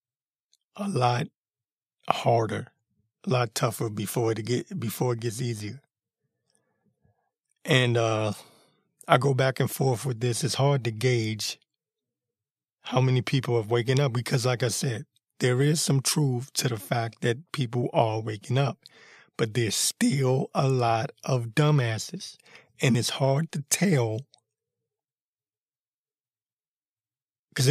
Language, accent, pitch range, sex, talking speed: English, American, 110-140 Hz, male, 130 wpm